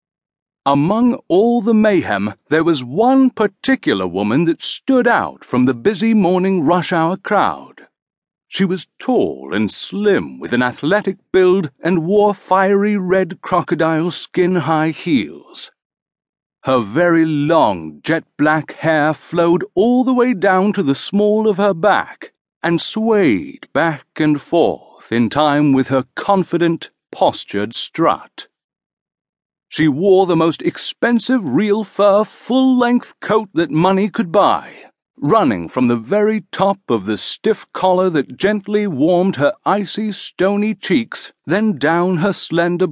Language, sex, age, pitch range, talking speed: English, male, 50-69, 155-210 Hz, 135 wpm